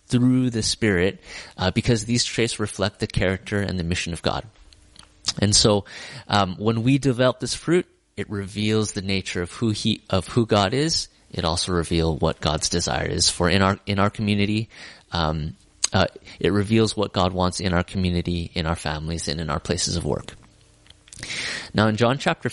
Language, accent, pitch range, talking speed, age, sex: English, American, 90-110 Hz, 185 wpm, 30-49, male